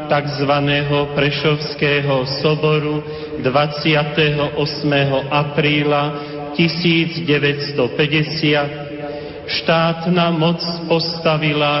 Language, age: Slovak, 40-59